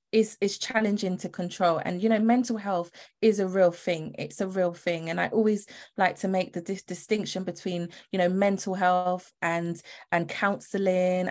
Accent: British